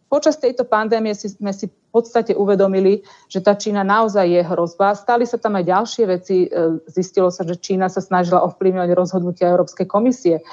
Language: Slovak